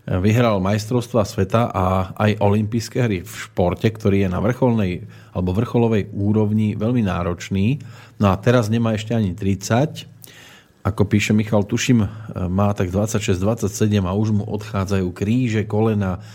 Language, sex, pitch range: Slovak, male, 100-115 Hz